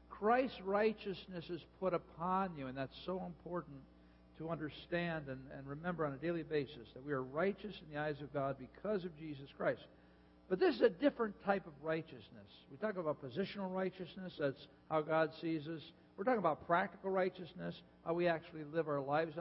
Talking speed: 190 wpm